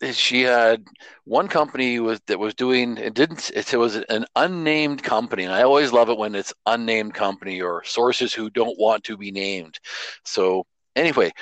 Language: English